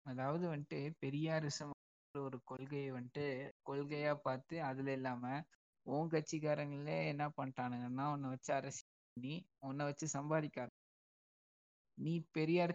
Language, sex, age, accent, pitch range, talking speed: Tamil, male, 20-39, native, 130-150 Hz, 110 wpm